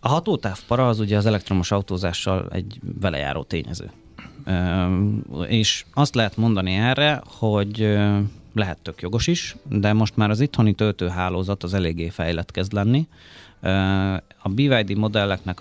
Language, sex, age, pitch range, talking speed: Hungarian, male, 30-49, 90-110 Hz, 140 wpm